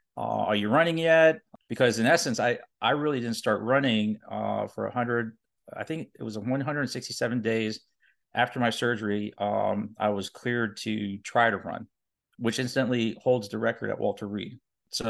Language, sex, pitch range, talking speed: English, male, 105-120 Hz, 175 wpm